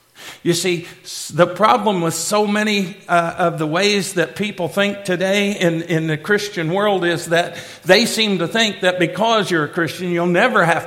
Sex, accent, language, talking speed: male, American, English, 190 wpm